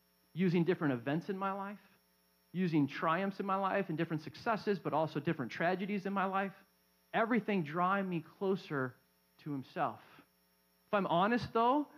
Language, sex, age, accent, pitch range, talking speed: English, male, 40-59, American, 125-195 Hz, 155 wpm